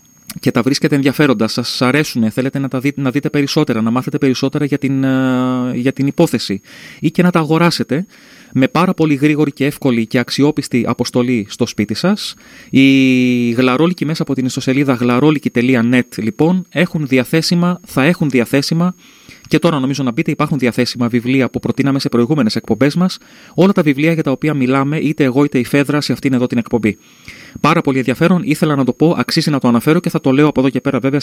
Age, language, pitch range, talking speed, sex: 30-49, Greek, 125-165 Hz, 195 wpm, male